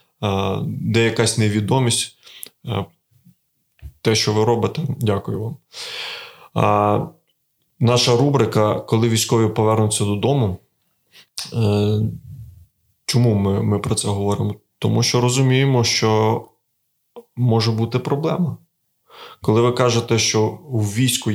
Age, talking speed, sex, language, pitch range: 20-39, 95 wpm, male, Ukrainian, 105-130 Hz